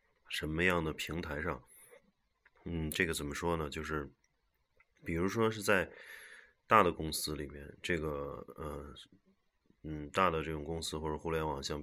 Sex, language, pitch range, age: male, Chinese, 75-90 Hz, 20-39